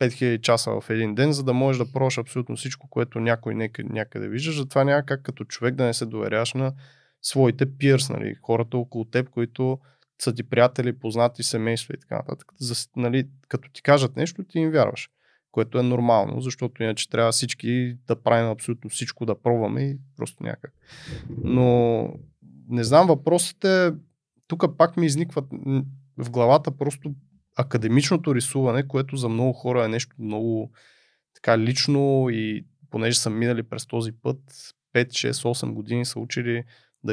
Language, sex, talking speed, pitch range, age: Bulgarian, male, 160 wpm, 115-140 Hz, 20-39